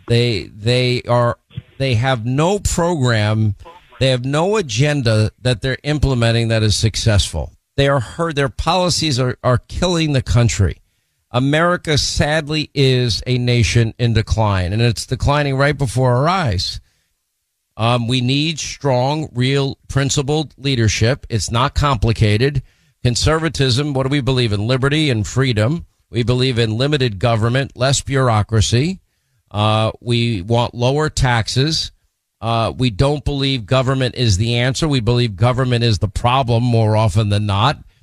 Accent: American